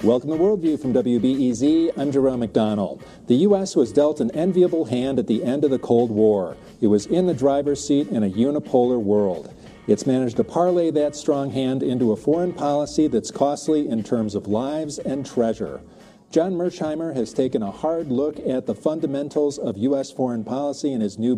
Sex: male